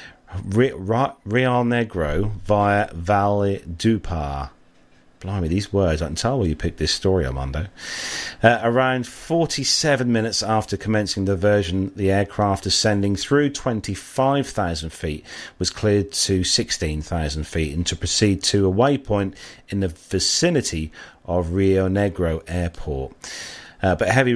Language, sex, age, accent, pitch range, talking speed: English, male, 40-59, British, 90-115 Hz, 130 wpm